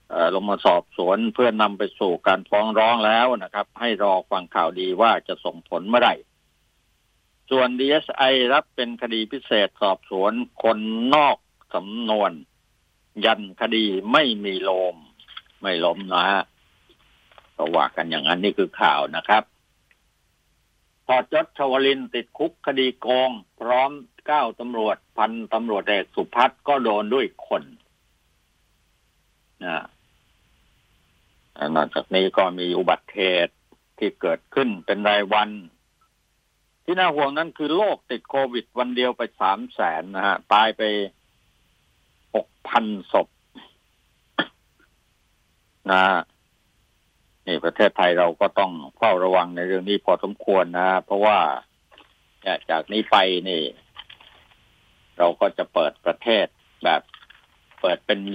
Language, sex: Thai, male